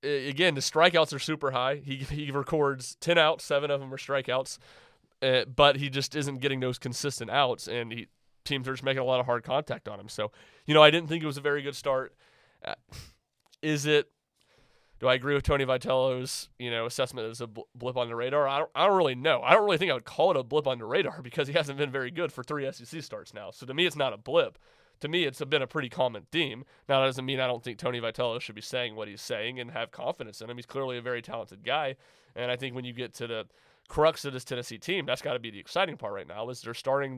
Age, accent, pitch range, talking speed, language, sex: 30-49, American, 125-145 Hz, 265 wpm, English, male